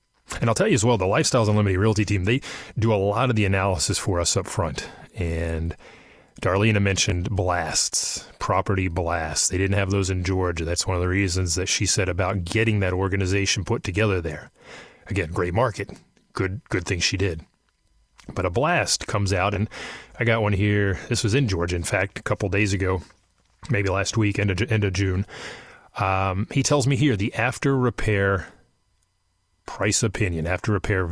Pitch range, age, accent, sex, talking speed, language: 95-110 Hz, 30-49, American, male, 185 wpm, English